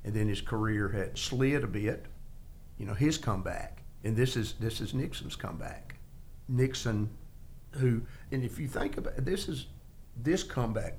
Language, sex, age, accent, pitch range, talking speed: English, male, 50-69, American, 95-125 Hz, 170 wpm